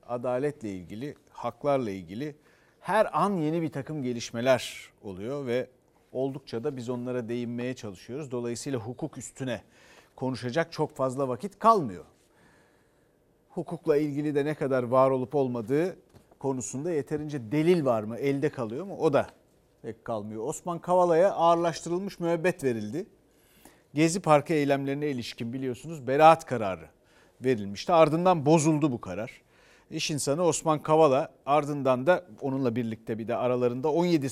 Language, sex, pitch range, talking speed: Turkish, male, 125-155 Hz, 130 wpm